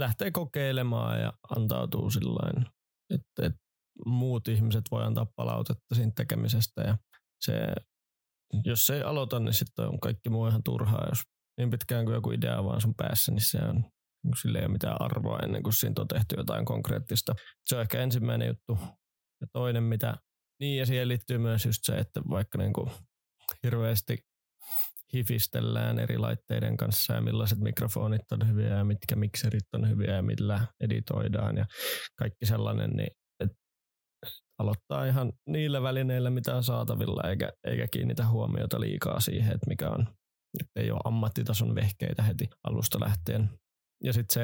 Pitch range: 105-125 Hz